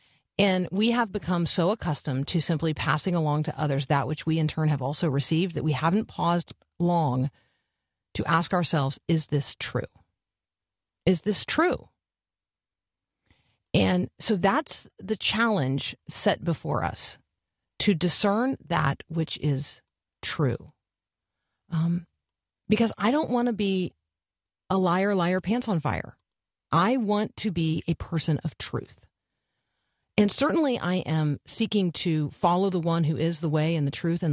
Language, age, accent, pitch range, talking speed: English, 40-59, American, 140-185 Hz, 150 wpm